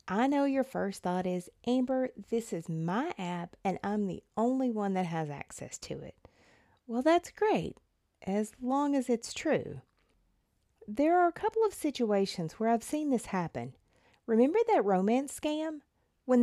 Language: English